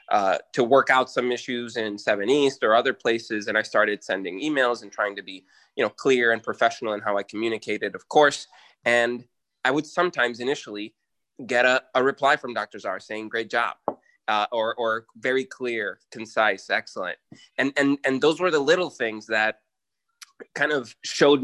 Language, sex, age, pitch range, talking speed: English, male, 20-39, 110-145 Hz, 185 wpm